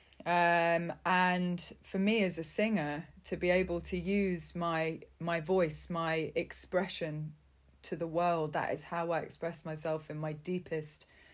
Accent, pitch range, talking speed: British, 155-185 Hz, 155 wpm